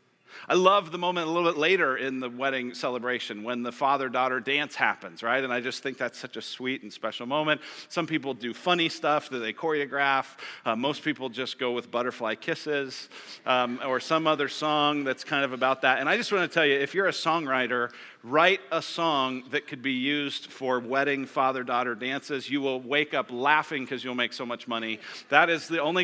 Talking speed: 210 wpm